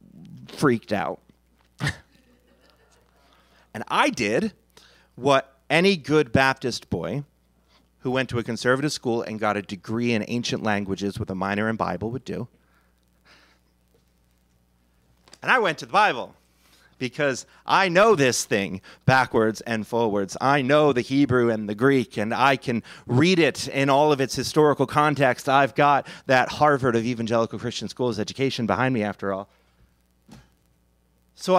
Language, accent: English, American